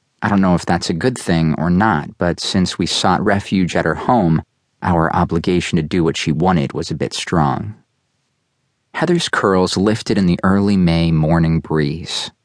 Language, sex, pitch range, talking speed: English, male, 80-110 Hz, 185 wpm